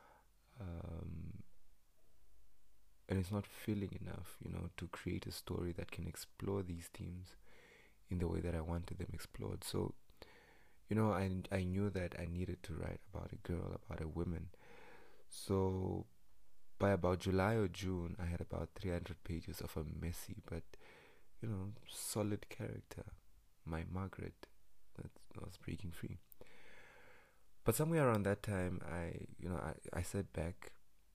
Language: English